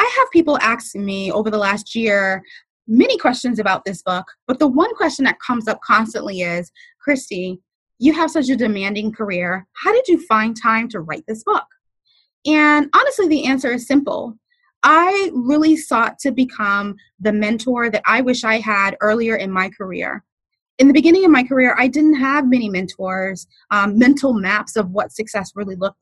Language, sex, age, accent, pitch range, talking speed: English, female, 20-39, American, 210-290 Hz, 185 wpm